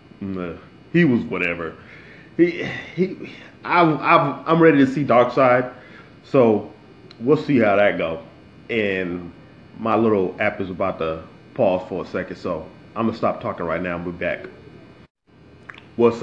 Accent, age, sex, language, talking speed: American, 20-39, male, English, 155 wpm